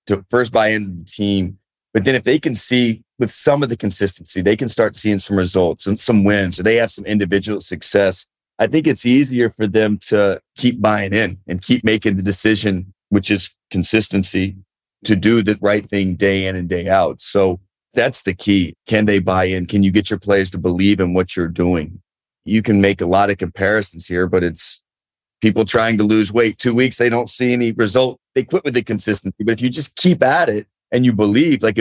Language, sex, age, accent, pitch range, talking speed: English, male, 40-59, American, 95-115 Hz, 220 wpm